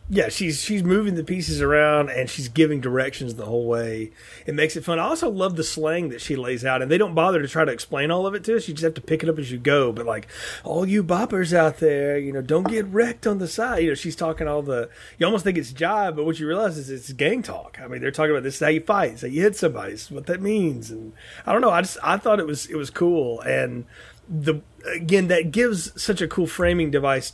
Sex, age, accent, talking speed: male, 30-49, American, 275 wpm